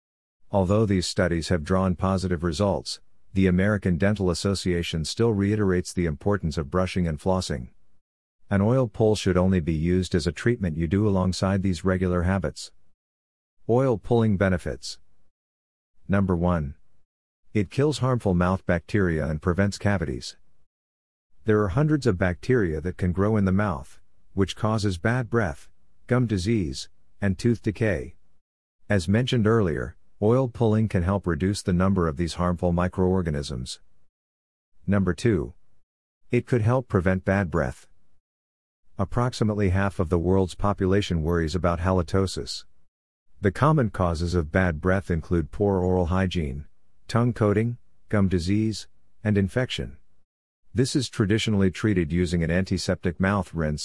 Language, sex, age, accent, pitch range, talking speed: English, male, 50-69, American, 85-105 Hz, 140 wpm